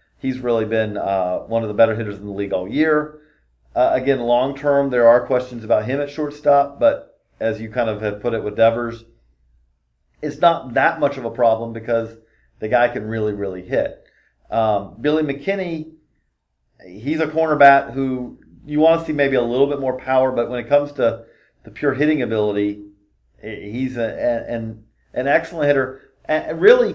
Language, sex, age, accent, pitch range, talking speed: English, male, 40-59, American, 115-150 Hz, 185 wpm